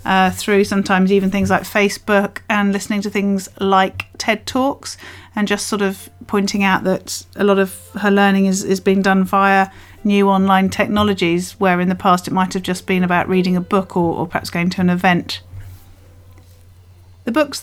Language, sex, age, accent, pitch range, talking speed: English, female, 40-59, British, 190-215 Hz, 190 wpm